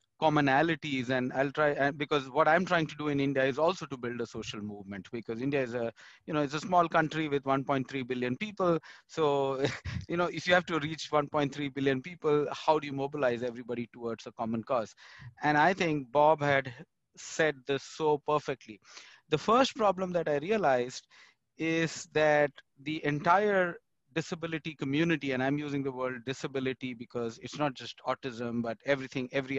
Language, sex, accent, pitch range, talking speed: English, male, Indian, 135-170 Hz, 180 wpm